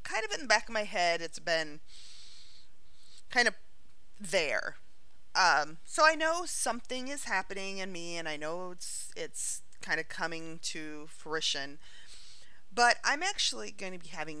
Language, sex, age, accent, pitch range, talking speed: English, female, 30-49, American, 155-210 Hz, 160 wpm